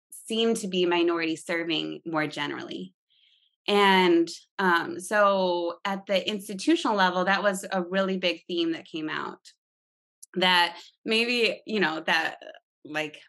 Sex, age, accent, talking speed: female, 20-39, American, 130 wpm